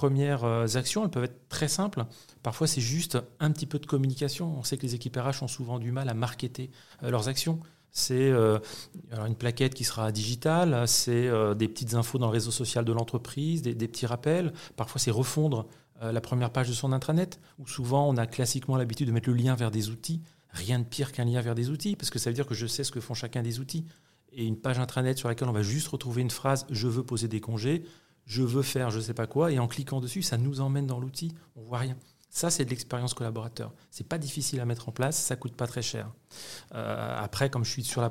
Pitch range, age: 115-140 Hz, 40-59